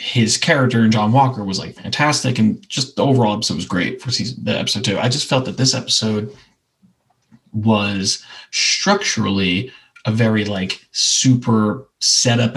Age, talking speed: 30-49, 160 wpm